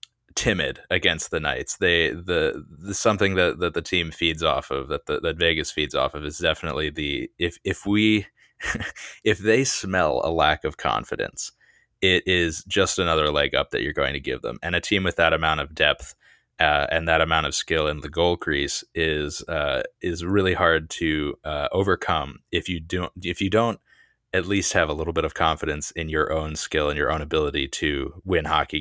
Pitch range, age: 80-95 Hz, 20-39